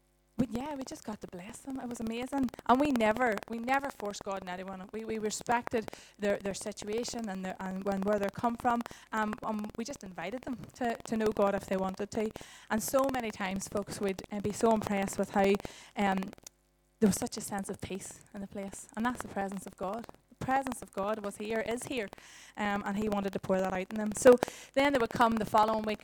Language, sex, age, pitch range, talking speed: English, female, 20-39, 195-235 Hz, 235 wpm